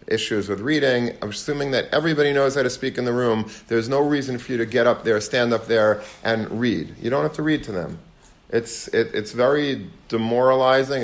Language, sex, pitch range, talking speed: English, male, 110-130 Hz, 210 wpm